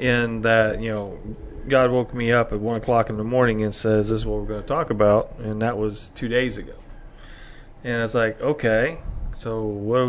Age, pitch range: 40-59, 110-125 Hz